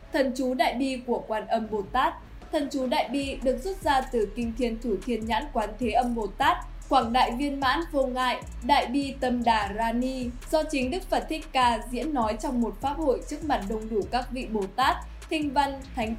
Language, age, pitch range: Vietnamese, 10-29, 225-280 Hz